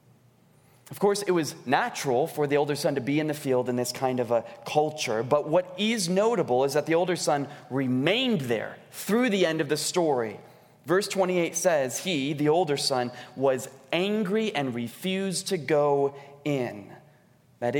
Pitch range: 135-190 Hz